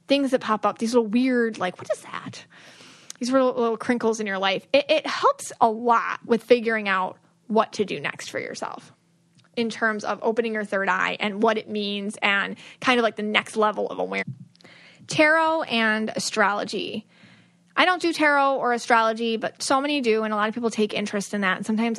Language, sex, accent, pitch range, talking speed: English, female, American, 210-265 Hz, 205 wpm